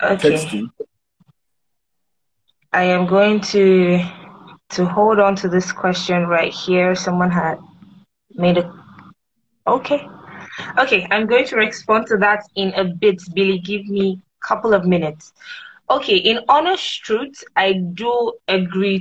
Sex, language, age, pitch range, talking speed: female, English, 20-39, 180-215 Hz, 135 wpm